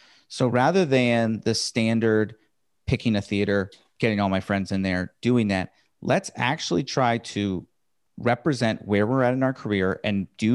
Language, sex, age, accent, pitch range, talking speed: English, male, 30-49, American, 100-130 Hz, 165 wpm